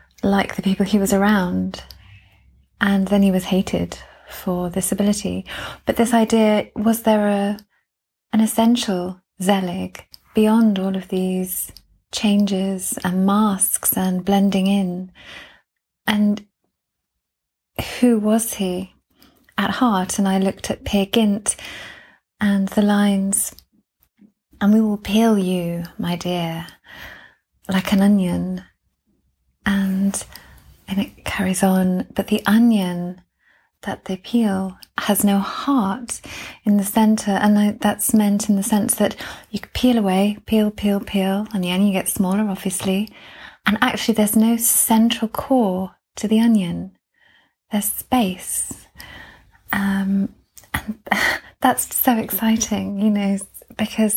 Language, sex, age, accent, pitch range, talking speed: English, female, 20-39, British, 190-215 Hz, 125 wpm